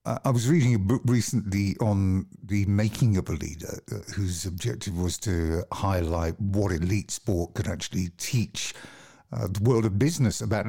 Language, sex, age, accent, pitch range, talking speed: English, male, 50-69, British, 90-115 Hz, 175 wpm